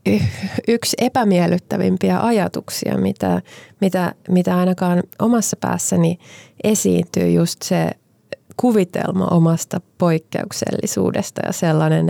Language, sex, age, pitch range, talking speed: Finnish, female, 20-39, 135-190 Hz, 80 wpm